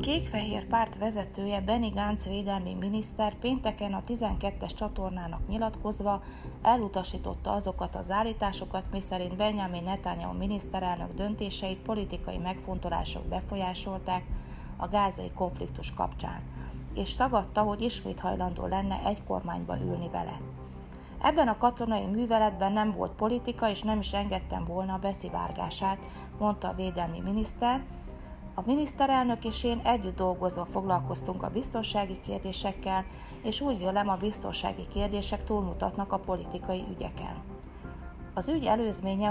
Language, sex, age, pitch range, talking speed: Hungarian, female, 30-49, 180-215 Hz, 120 wpm